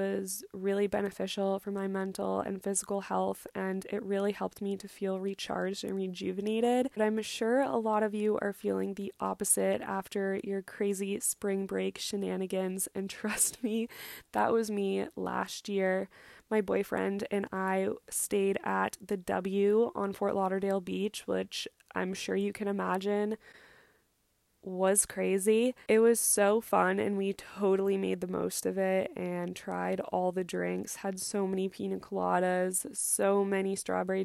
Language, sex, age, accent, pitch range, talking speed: English, female, 20-39, American, 185-205 Hz, 155 wpm